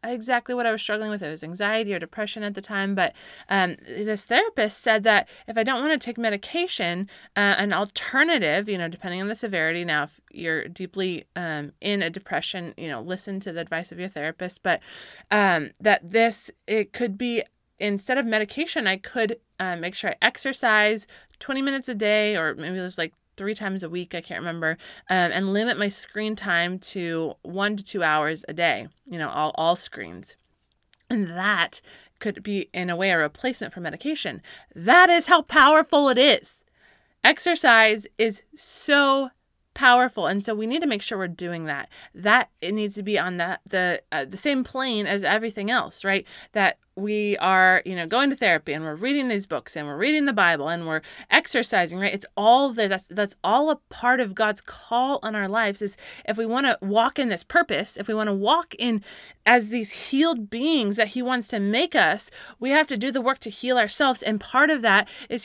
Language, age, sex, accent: English, 20-39, female, American